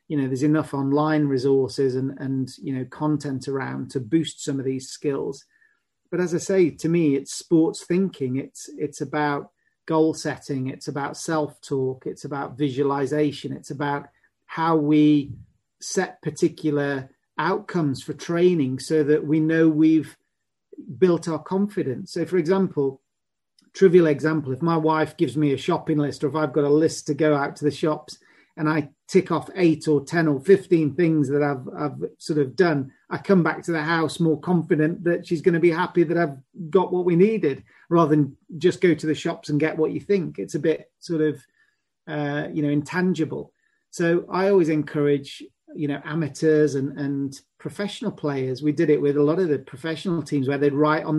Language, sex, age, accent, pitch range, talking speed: English, male, 40-59, British, 145-170 Hz, 190 wpm